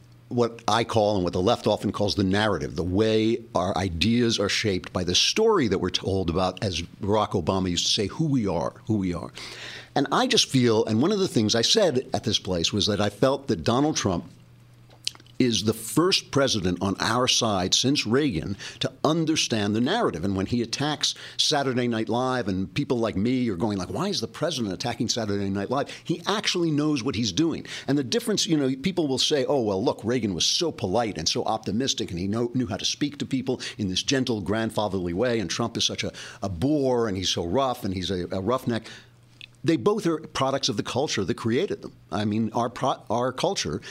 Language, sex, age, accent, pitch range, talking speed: English, male, 60-79, American, 100-130 Hz, 220 wpm